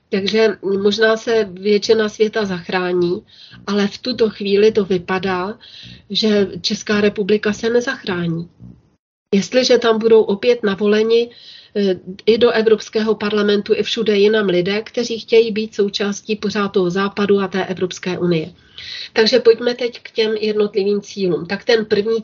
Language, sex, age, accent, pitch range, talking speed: Czech, female, 40-59, native, 190-225 Hz, 140 wpm